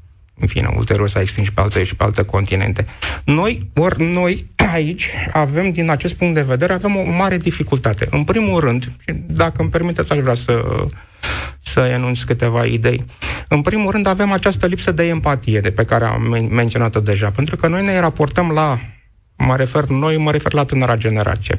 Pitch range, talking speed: 110-145 Hz, 190 wpm